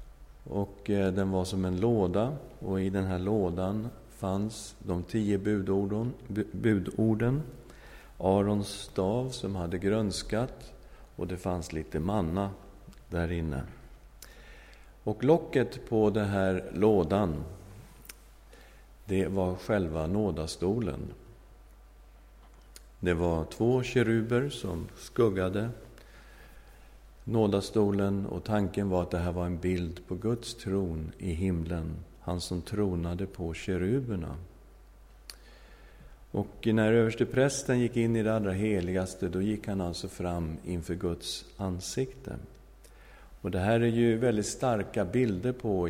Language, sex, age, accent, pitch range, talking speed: English, male, 50-69, Swedish, 90-110 Hz, 120 wpm